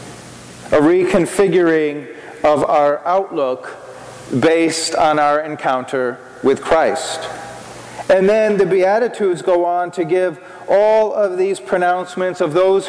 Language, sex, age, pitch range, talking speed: English, male, 40-59, 155-195 Hz, 115 wpm